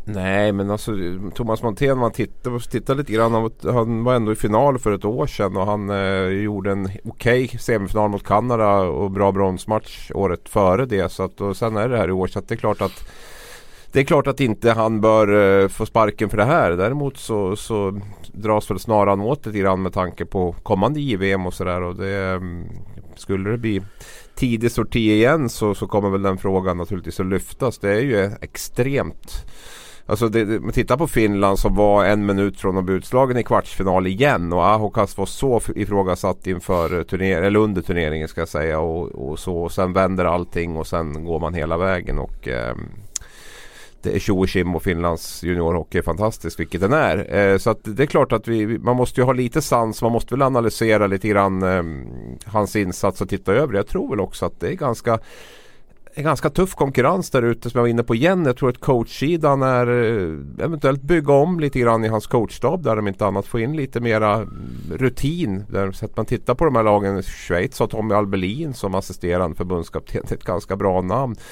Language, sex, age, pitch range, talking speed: Swedish, male, 30-49, 95-115 Hz, 205 wpm